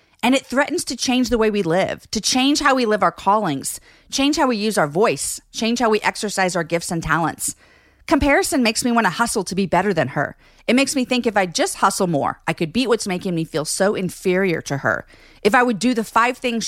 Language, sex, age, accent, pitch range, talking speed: English, female, 40-59, American, 175-240 Hz, 245 wpm